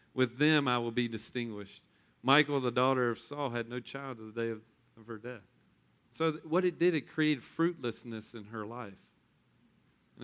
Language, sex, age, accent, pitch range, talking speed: English, male, 40-59, American, 120-155 Hz, 195 wpm